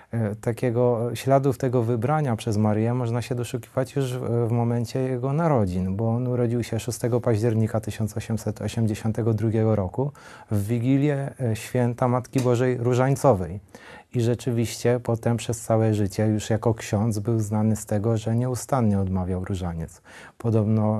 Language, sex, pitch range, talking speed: Polish, male, 110-125 Hz, 130 wpm